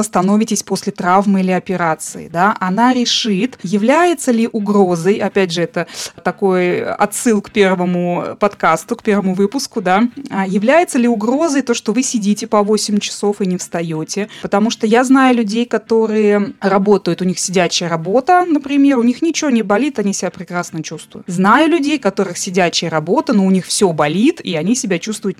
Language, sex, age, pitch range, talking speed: Russian, female, 20-39, 185-235 Hz, 170 wpm